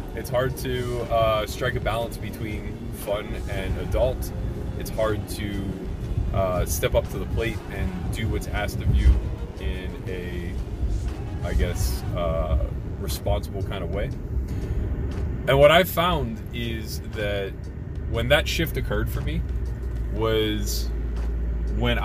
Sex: male